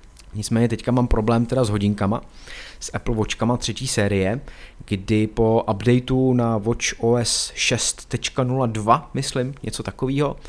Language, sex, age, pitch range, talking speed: Czech, male, 30-49, 110-135 Hz, 125 wpm